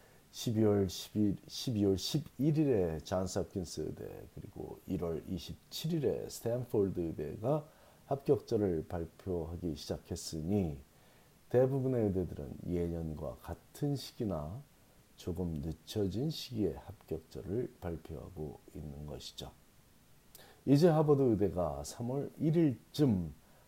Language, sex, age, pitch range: Korean, male, 40-59, 85-125 Hz